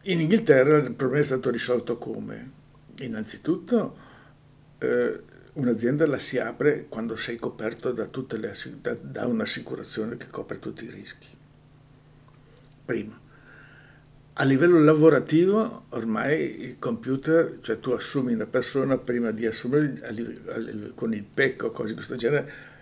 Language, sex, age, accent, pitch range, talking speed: Italian, male, 60-79, native, 115-140 Hz, 140 wpm